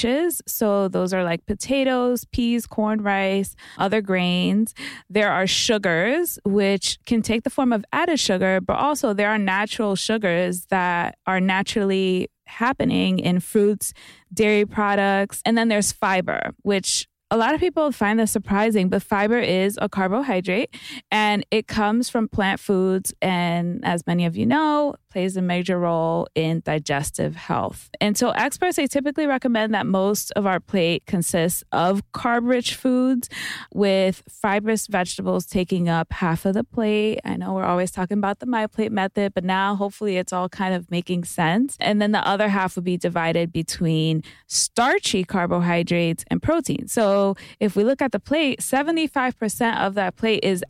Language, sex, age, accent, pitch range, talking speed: English, female, 20-39, American, 185-225 Hz, 165 wpm